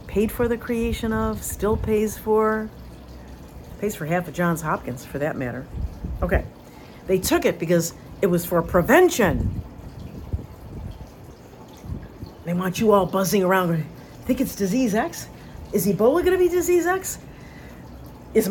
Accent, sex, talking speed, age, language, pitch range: American, female, 140 wpm, 50-69, English, 165-255 Hz